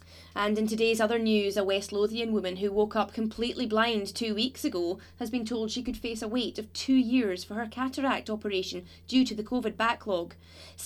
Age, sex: 30-49, female